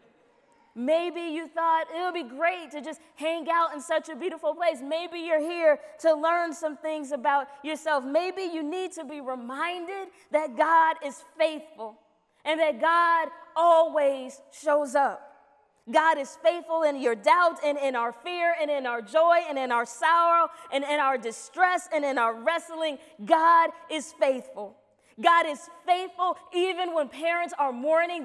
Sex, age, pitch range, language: female, 20-39, 305-365 Hz, English